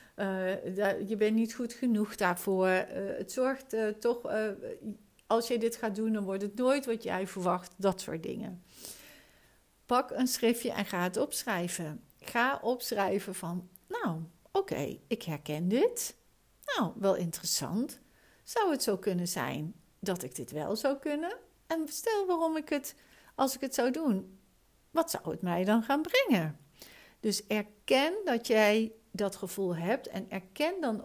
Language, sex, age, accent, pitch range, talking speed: Dutch, female, 60-79, Dutch, 185-240 Hz, 160 wpm